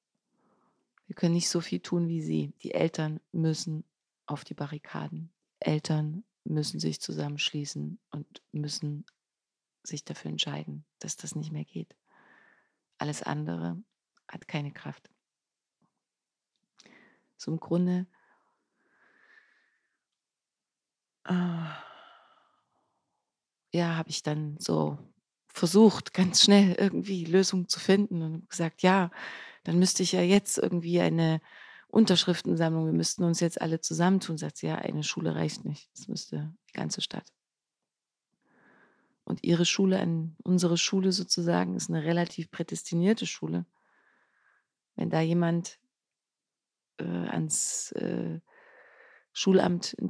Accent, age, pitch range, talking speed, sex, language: German, 40-59, 150-190 Hz, 115 wpm, female, German